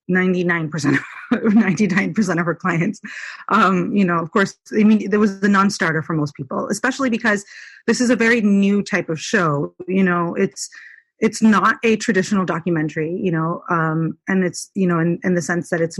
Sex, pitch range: female, 180-220 Hz